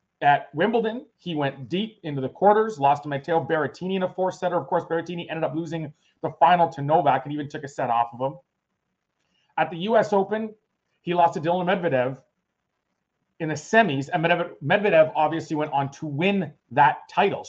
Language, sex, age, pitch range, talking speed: English, male, 30-49, 160-215 Hz, 185 wpm